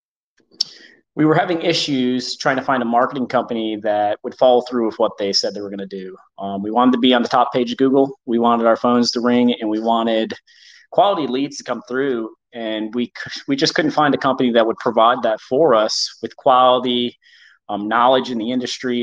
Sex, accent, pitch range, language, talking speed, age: male, American, 115-135 Hz, English, 220 wpm, 30-49